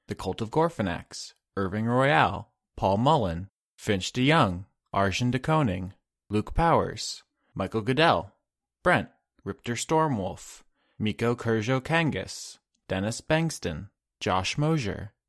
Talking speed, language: 105 wpm, English